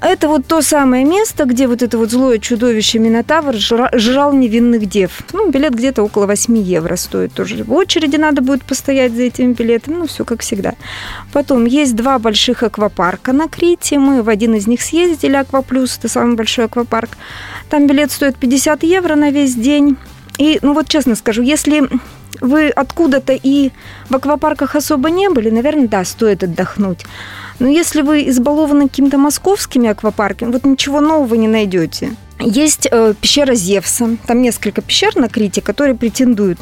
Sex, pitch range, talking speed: female, 225-290 Hz, 165 wpm